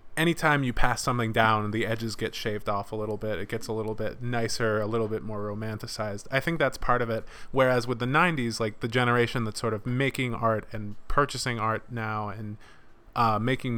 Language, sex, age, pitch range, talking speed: English, male, 20-39, 110-130 Hz, 215 wpm